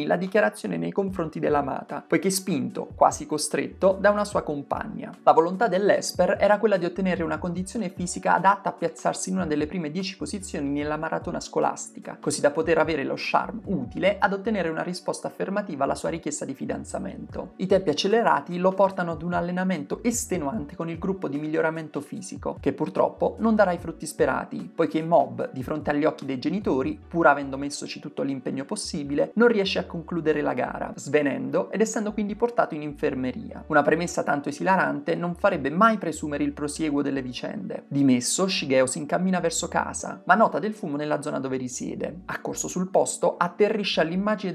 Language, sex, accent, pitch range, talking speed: Italian, male, native, 155-200 Hz, 180 wpm